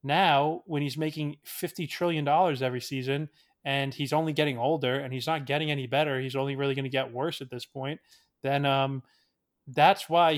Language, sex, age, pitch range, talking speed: English, male, 20-39, 140-180 Hz, 190 wpm